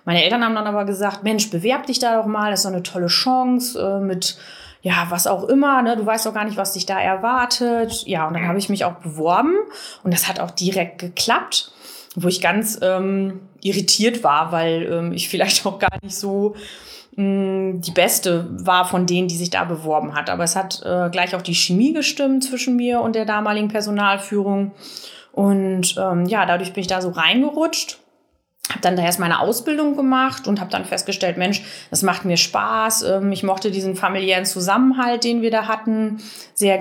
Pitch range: 180-220 Hz